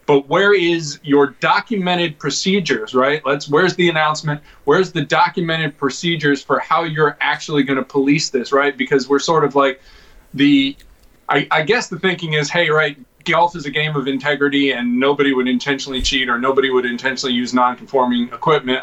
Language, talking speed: English, 180 wpm